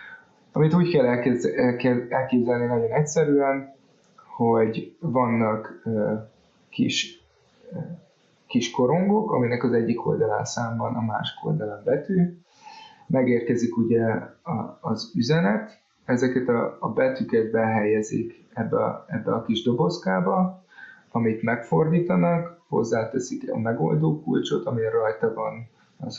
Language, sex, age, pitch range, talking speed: Hungarian, male, 30-49, 115-145 Hz, 105 wpm